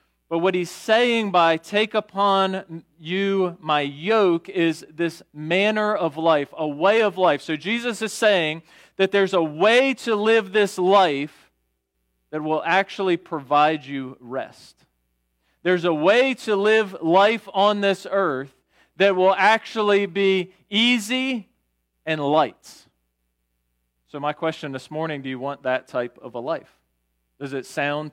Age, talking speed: 40-59, 145 wpm